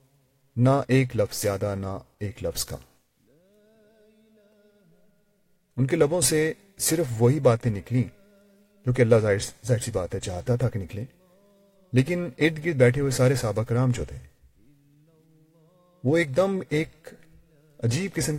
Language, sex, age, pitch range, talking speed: Urdu, male, 40-59, 120-175 Hz, 140 wpm